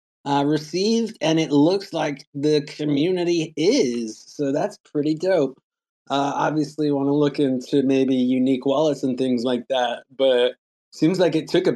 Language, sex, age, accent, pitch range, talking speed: English, male, 30-49, American, 120-155 Hz, 165 wpm